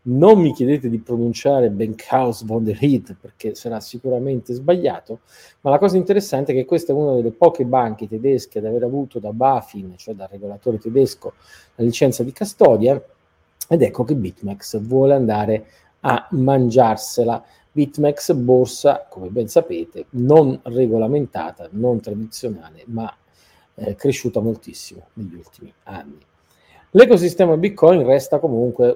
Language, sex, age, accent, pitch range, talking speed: Italian, male, 40-59, native, 115-140 Hz, 140 wpm